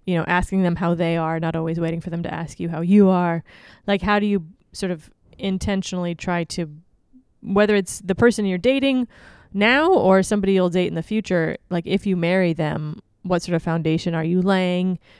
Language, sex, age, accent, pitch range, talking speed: English, female, 20-39, American, 165-195 Hz, 210 wpm